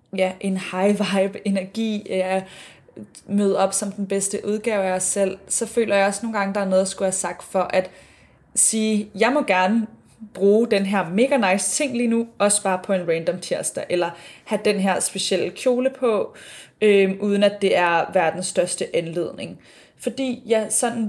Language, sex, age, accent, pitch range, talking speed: Danish, female, 20-39, native, 185-210 Hz, 175 wpm